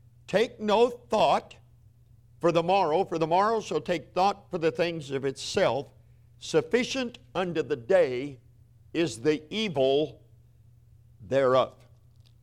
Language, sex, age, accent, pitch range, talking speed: English, male, 50-69, American, 115-145 Hz, 120 wpm